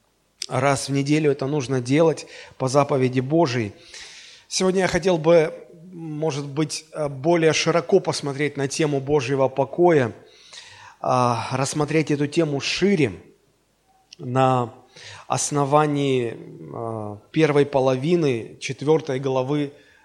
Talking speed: 95 wpm